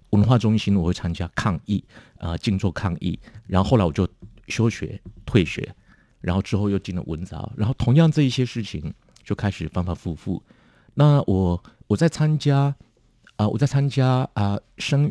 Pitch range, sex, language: 85-110 Hz, male, Chinese